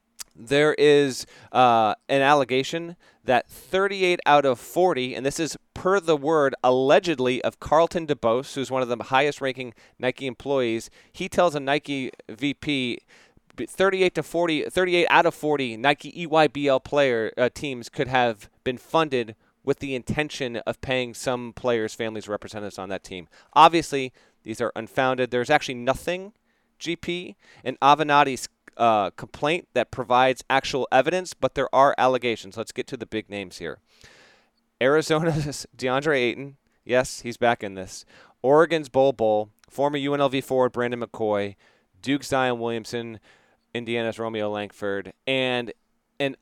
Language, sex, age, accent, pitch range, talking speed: English, male, 30-49, American, 115-145 Hz, 145 wpm